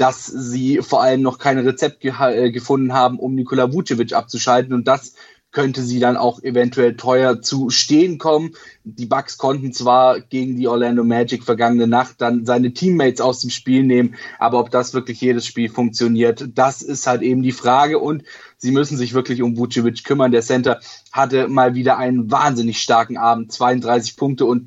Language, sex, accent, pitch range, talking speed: German, male, German, 120-135 Hz, 180 wpm